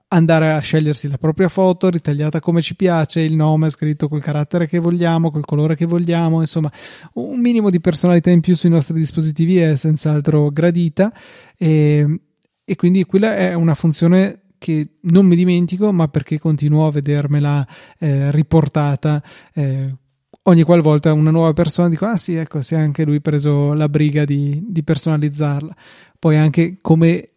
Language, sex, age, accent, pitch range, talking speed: Italian, male, 20-39, native, 150-170 Hz, 165 wpm